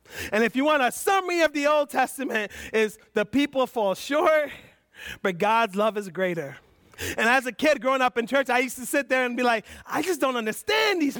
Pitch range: 240-315 Hz